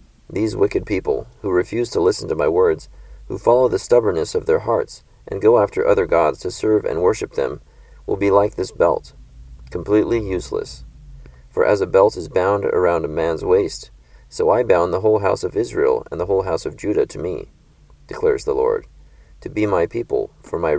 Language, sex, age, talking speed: English, male, 40-59, 200 wpm